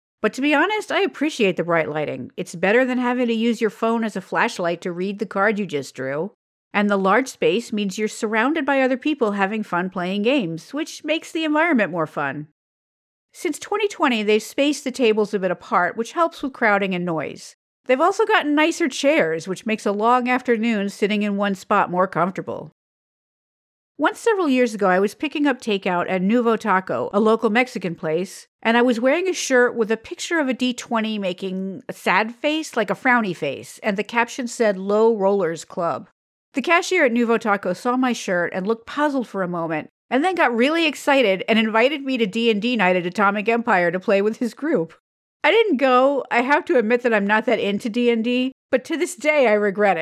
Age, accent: 50-69, American